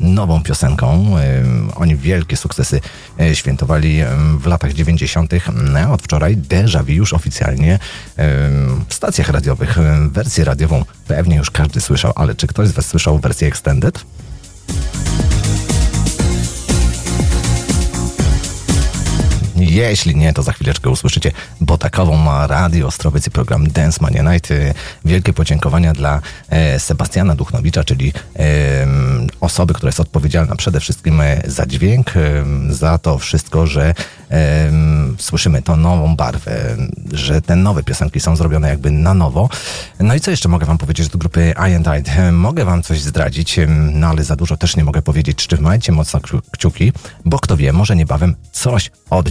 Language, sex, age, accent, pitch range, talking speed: Polish, male, 40-59, native, 75-85 Hz, 140 wpm